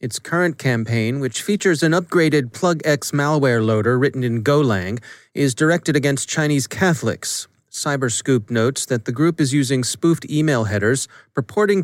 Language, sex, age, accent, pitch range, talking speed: English, male, 30-49, American, 125-155 Hz, 145 wpm